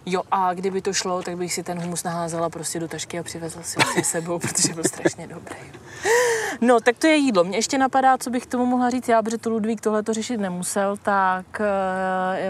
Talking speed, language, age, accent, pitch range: 220 wpm, Czech, 20-39, native, 170-200 Hz